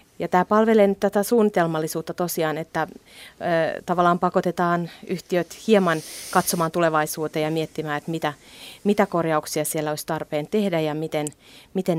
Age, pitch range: 30-49, 160-200 Hz